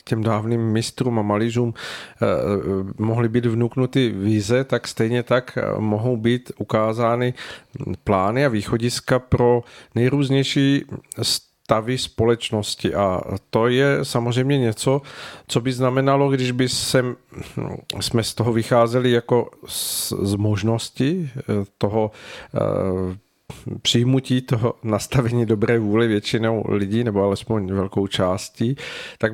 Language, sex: Czech, male